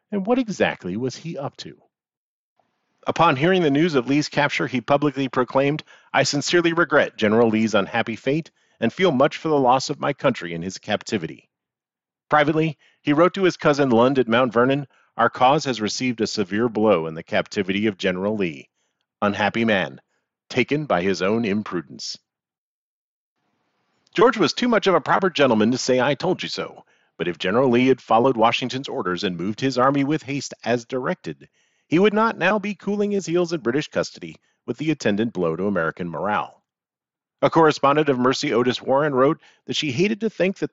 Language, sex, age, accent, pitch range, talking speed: English, male, 40-59, American, 115-160 Hz, 185 wpm